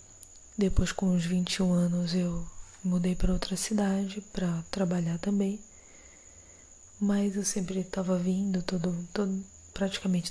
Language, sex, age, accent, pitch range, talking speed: Portuguese, female, 20-39, Brazilian, 170-190 Hz, 120 wpm